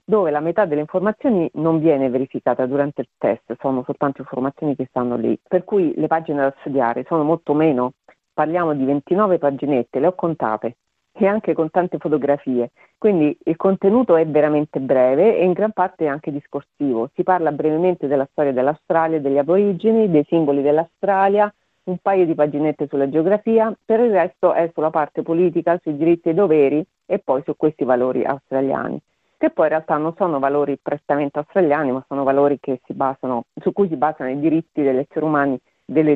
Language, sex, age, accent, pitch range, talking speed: Italian, female, 40-59, native, 140-175 Hz, 185 wpm